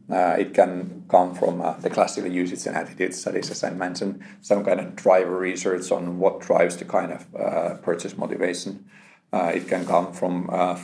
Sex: male